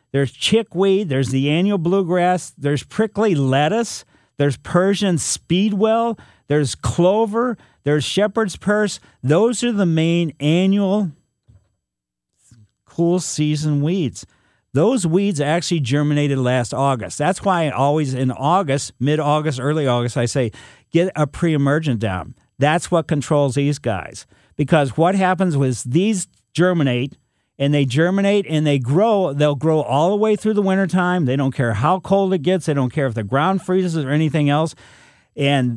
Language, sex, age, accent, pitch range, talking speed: English, male, 50-69, American, 135-180 Hz, 150 wpm